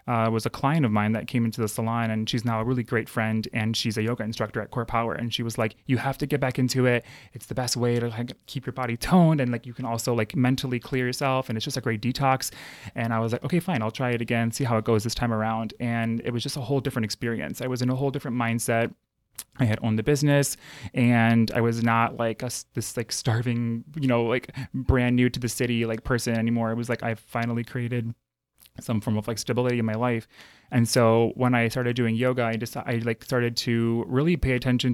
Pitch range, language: 115-125 Hz, English